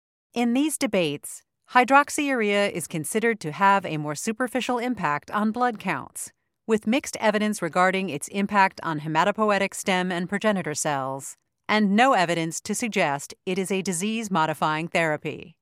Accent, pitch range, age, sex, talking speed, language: American, 165-235 Hz, 40-59, female, 140 wpm, English